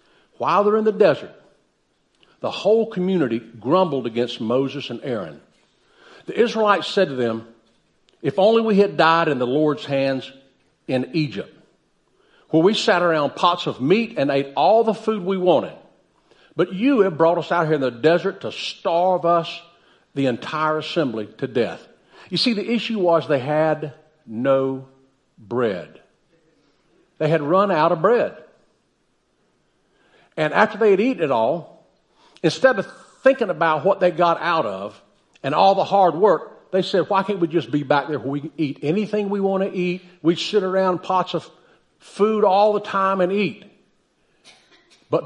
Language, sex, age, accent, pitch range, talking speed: English, male, 50-69, American, 150-200 Hz, 170 wpm